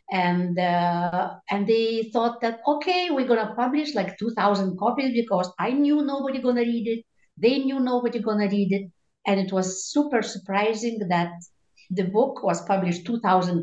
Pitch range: 185-235 Hz